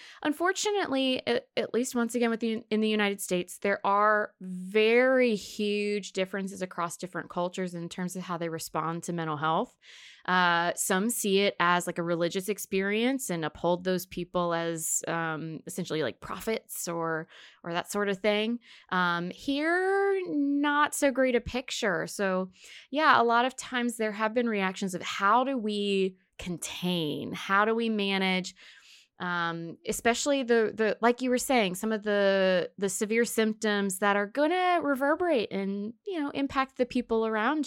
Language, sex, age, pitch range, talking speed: English, female, 20-39, 180-240 Hz, 165 wpm